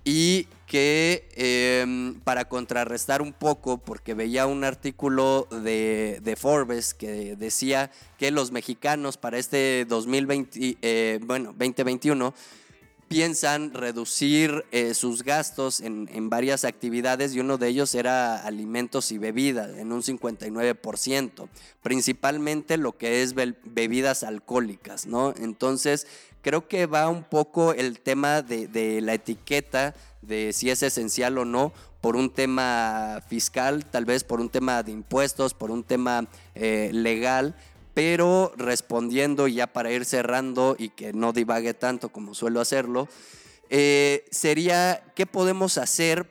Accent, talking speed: Mexican, 135 wpm